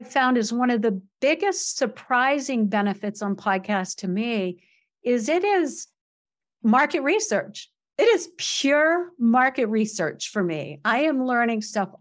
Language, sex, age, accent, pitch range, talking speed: English, female, 50-69, American, 190-245 Hz, 140 wpm